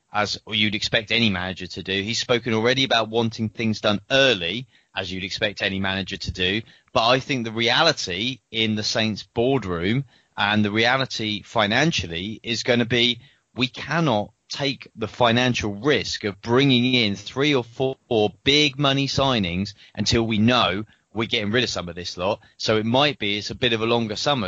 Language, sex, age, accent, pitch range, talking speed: English, male, 30-49, British, 105-125 Hz, 185 wpm